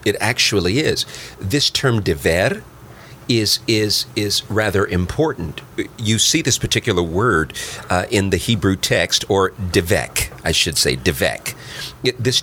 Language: English